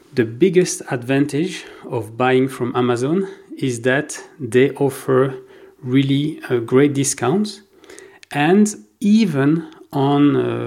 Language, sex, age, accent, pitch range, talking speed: English, male, 40-59, French, 125-170 Hz, 105 wpm